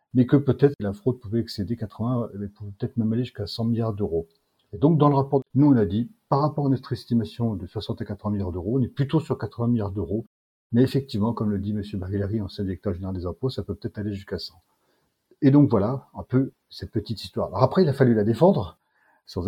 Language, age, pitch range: French, 40-59, 100-130 Hz